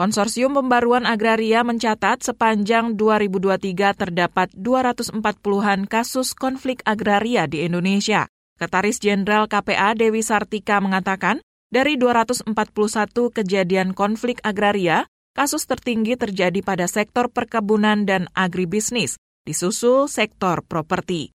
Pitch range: 195-235 Hz